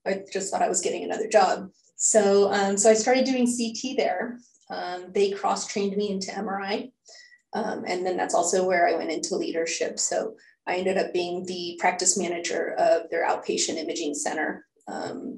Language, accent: English, American